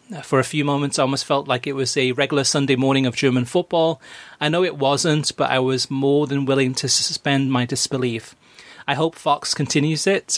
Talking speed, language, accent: 210 wpm, English, British